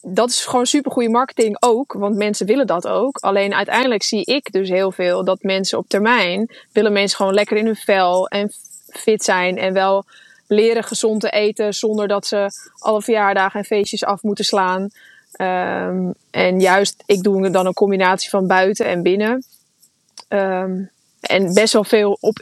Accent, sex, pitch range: Dutch, female, 190-215 Hz